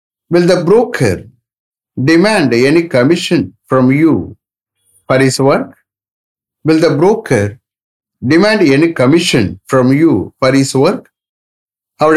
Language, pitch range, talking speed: English, 110-165 Hz, 115 wpm